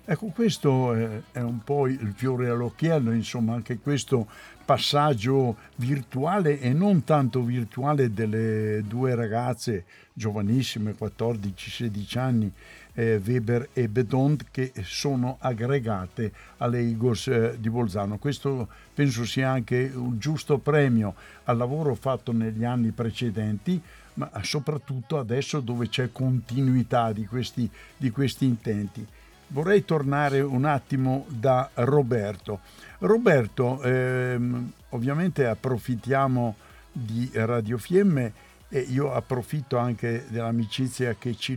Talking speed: 110 wpm